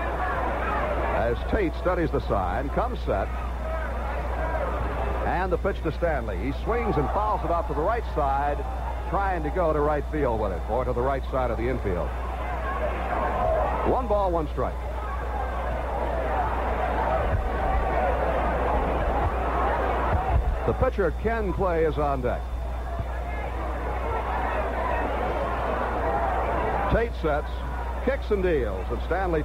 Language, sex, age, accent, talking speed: English, male, 60-79, American, 115 wpm